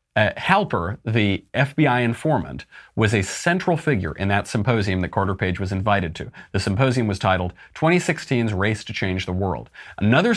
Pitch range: 95-135 Hz